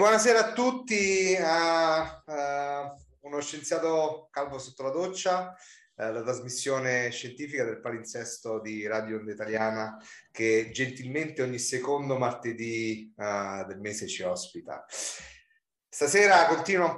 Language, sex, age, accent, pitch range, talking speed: Dutch, male, 30-49, Italian, 115-155 Hz, 110 wpm